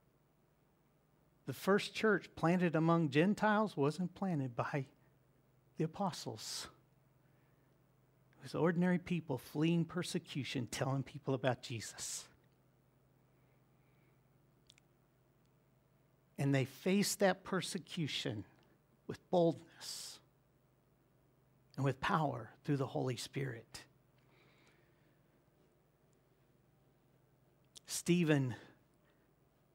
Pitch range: 135-180 Hz